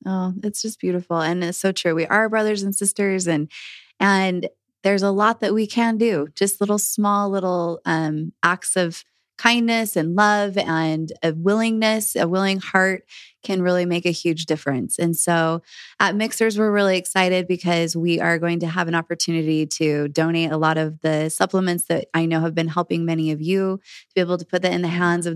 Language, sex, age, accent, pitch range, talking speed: English, female, 20-39, American, 165-190 Hz, 200 wpm